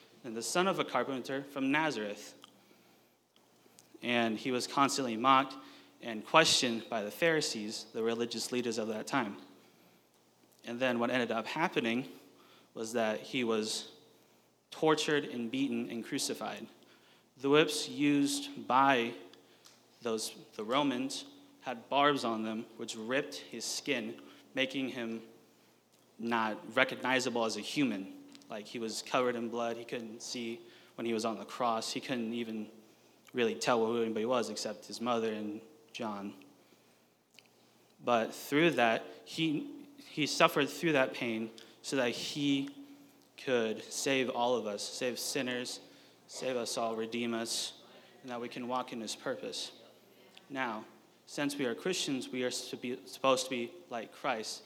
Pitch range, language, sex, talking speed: 115-145 Hz, English, male, 145 wpm